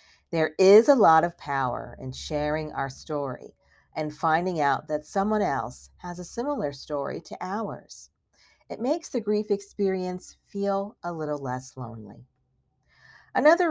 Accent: American